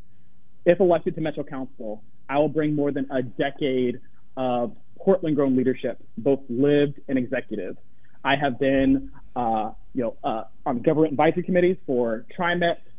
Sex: male